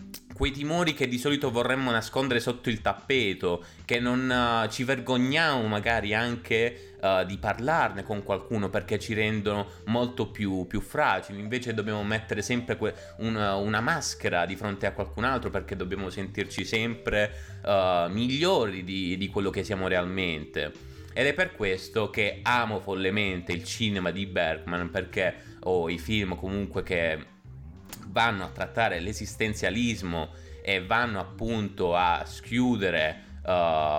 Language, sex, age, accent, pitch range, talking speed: Italian, male, 30-49, native, 95-120 Hz, 145 wpm